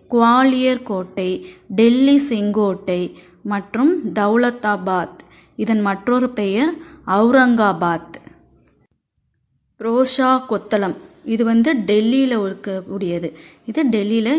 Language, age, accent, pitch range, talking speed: Tamil, 20-39, native, 205-275 Hz, 75 wpm